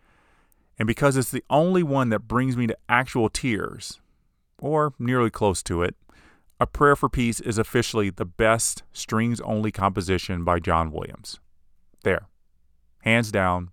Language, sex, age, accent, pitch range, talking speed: English, male, 30-49, American, 90-115 Hz, 145 wpm